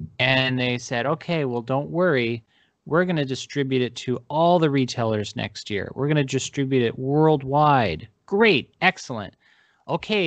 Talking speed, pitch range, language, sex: 160 wpm, 120-160 Hz, English, male